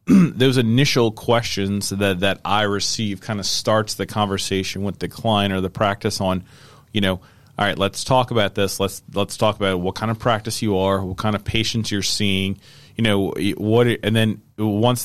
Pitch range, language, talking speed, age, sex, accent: 95-110 Hz, English, 195 wpm, 30-49, male, American